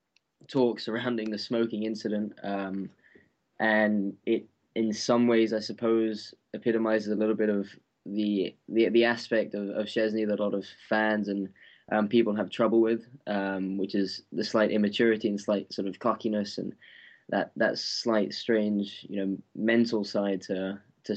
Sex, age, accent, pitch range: male, 10-29, British, 100-115 Hz